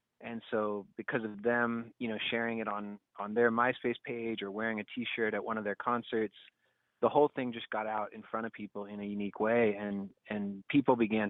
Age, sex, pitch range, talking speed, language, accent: 30-49, male, 100-115 Hz, 220 wpm, English, American